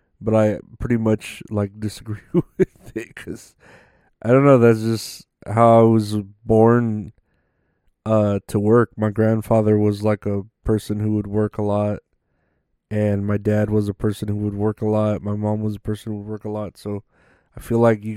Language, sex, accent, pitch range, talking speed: English, male, American, 105-115 Hz, 190 wpm